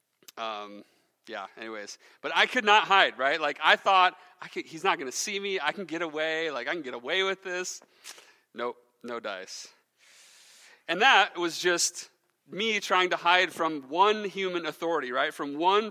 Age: 40-59